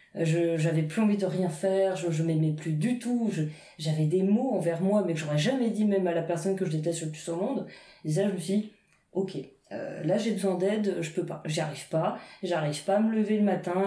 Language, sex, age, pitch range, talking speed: French, female, 20-39, 165-200 Hz, 260 wpm